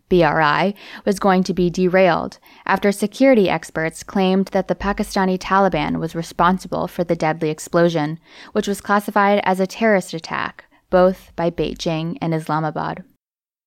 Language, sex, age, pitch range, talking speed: English, female, 10-29, 165-200 Hz, 140 wpm